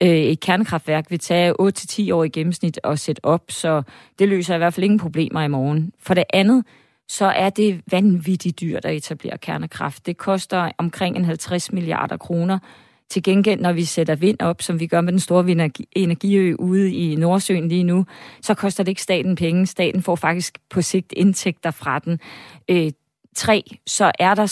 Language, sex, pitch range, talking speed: Danish, female, 165-195 Hz, 185 wpm